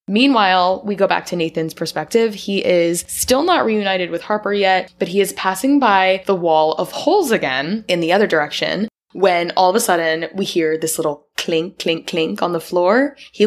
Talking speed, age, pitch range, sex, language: 200 wpm, 20-39, 160-205 Hz, female, English